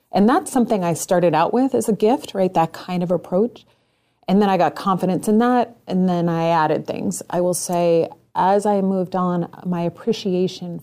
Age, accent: 30-49, American